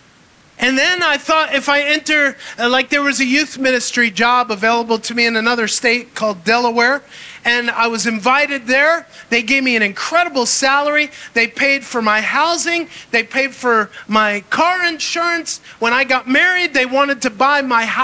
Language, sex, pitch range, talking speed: English, male, 255-335 Hz, 175 wpm